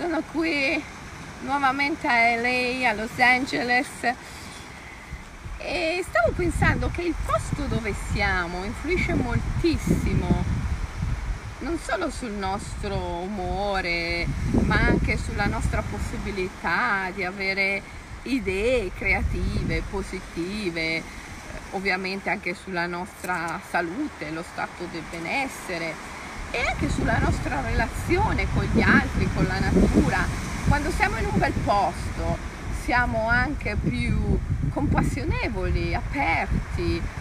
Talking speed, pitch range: 105 wpm, 185-265 Hz